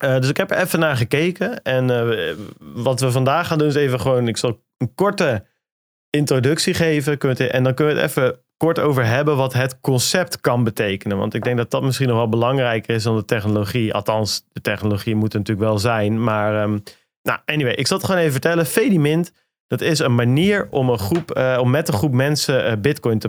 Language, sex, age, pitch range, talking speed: Dutch, male, 40-59, 110-135 Hz, 225 wpm